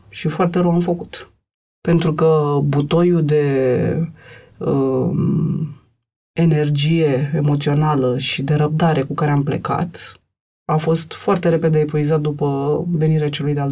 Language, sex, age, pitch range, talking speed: Romanian, female, 30-49, 150-180 Hz, 120 wpm